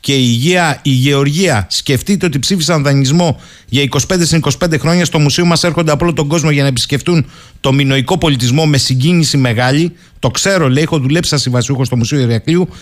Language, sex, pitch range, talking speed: Greek, male, 140-185 Hz, 180 wpm